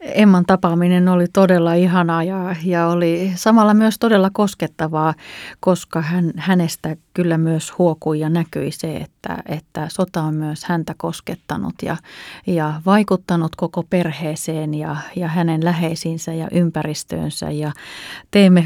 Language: Finnish